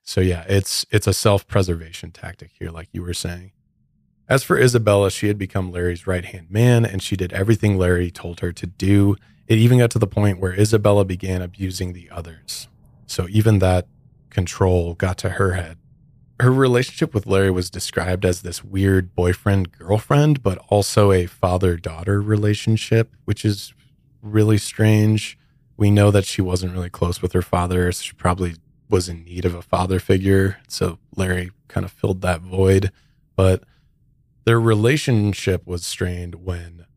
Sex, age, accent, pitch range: male, 20-39, American, 90-110 Hz